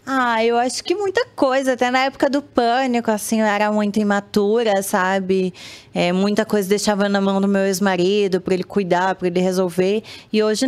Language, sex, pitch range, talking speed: Portuguese, female, 185-230 Hz, 180 wpm